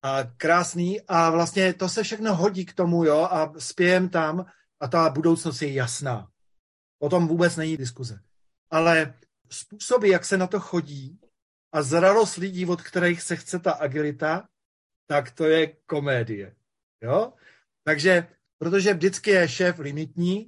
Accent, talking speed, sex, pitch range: native, 145 wpm, male, 155-195 Hz